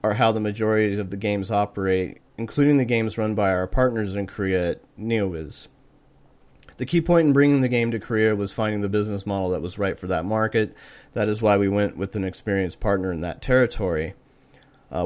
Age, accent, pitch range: 30-49, American, 95-115 Hz